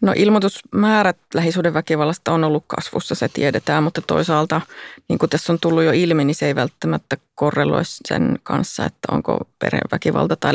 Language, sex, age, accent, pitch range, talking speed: Finnish, female, 30-49, native, 155-190 Hz, 160 wpm